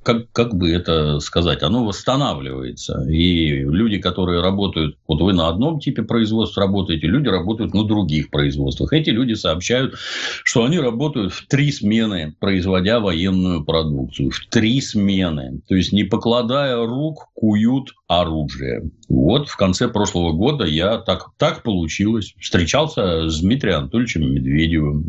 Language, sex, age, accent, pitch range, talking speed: Russian, male, 50-69, native, 80-110 Hz, 140 wpm